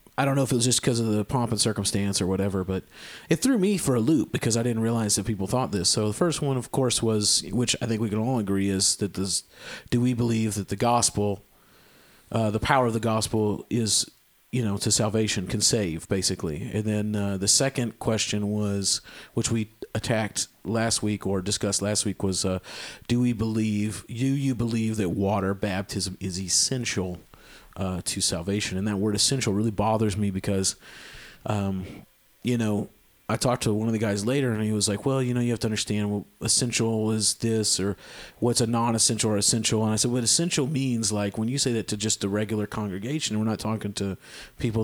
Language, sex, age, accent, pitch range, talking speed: English, male, 40-59, American, 100-120 Hz, 215 wpm